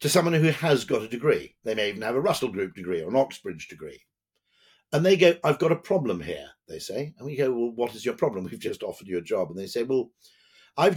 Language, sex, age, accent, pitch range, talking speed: English, male, 50-69, British, 110-185 Hz, 265 wpm